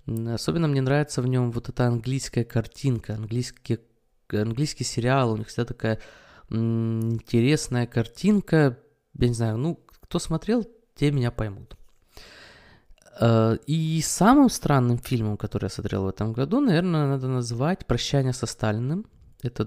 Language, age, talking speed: Russian, 20-39, 135 wpm